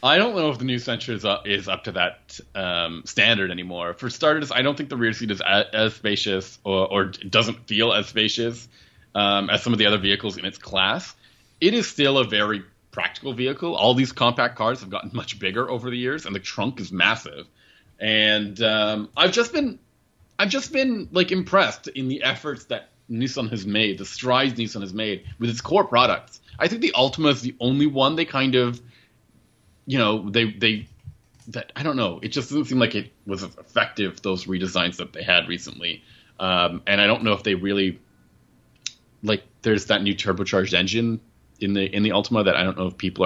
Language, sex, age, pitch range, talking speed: English, male, 30-49, 95-125 Hz, 205 wpm